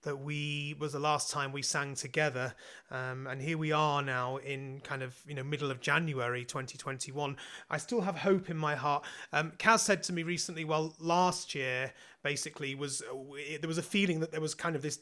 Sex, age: male, 30-49